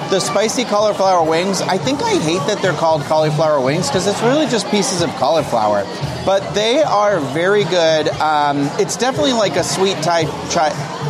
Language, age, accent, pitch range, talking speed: English, 30-49, American, 150-190 Hz, 180 wpm